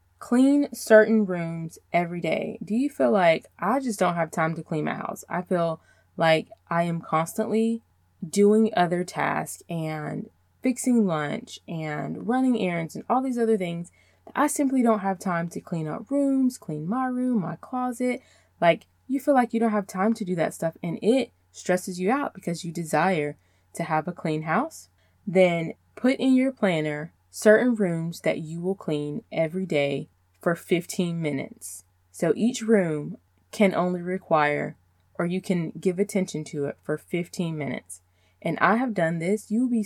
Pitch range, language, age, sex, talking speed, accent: 155-220 Hz, English, 20-39, female, 175 wpm, American